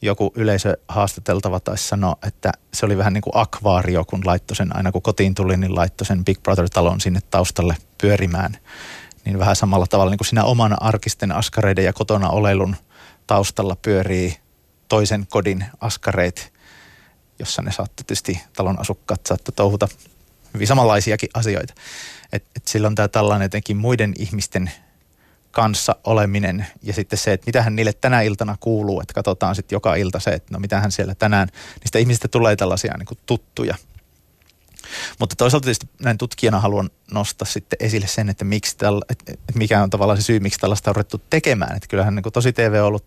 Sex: male